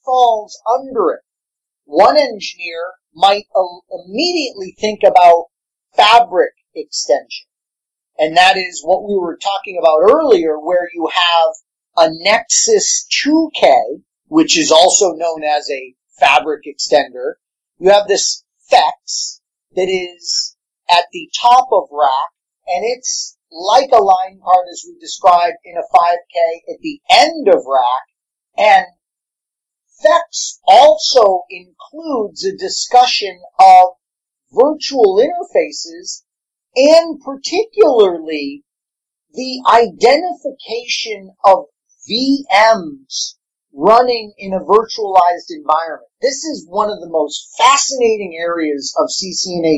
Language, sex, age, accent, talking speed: English, male, 40-59, American, 110 wpm